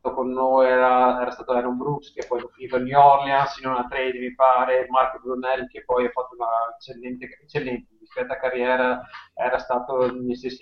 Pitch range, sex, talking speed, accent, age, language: 125-145 Hz, male, 185 wpm, native, 30-49, Italian